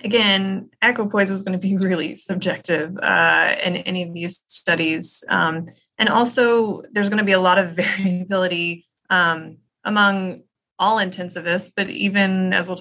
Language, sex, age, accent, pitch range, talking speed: English, female, 20-39, American, 175-210 Hz, 155 wpm